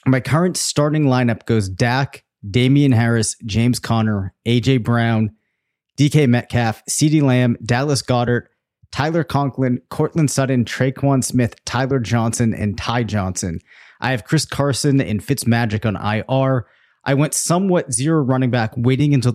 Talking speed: 140 wpm